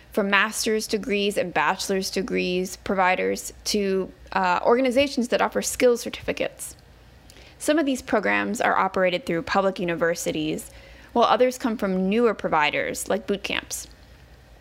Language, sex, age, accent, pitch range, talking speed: English, female, 20-39, American, 175-240 Hz, 130 wpm